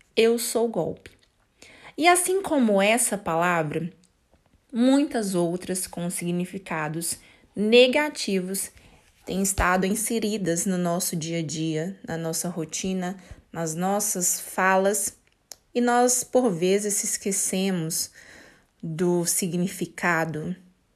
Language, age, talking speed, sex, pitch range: Portuguese, 20-39, 95 wpm, female, 170-205 Hz